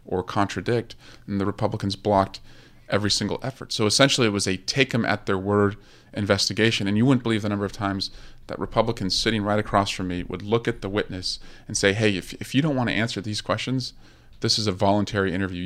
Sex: male